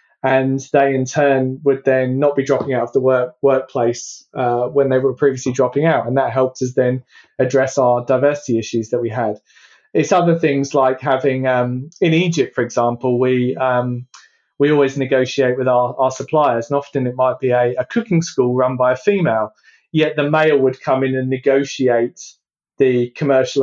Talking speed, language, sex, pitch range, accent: 195 wpm, English, male, 125-150 Hz, British